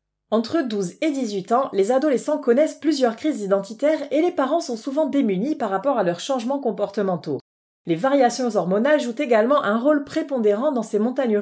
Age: 30-49